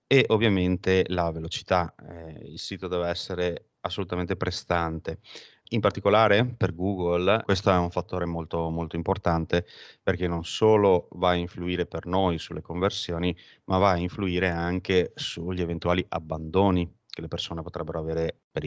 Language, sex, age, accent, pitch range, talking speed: Italian, male, 30-49, native, 85-95 Hz, 150 wpm